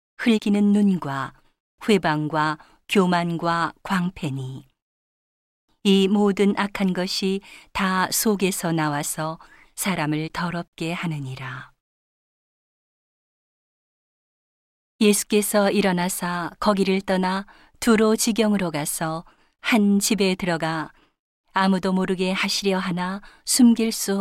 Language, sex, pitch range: Korean, female, 165-205 Hz